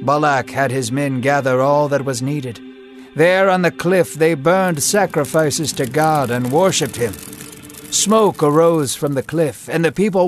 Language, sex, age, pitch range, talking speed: English, male, 60-79, 130-170 Hz, 170 wpm